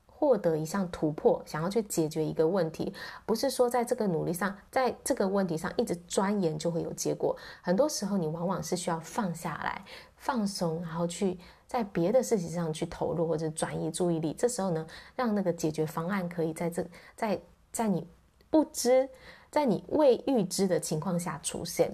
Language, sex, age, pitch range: Chinese, female, 20-39, 165-205 Hz